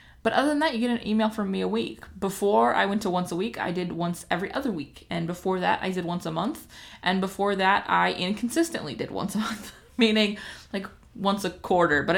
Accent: American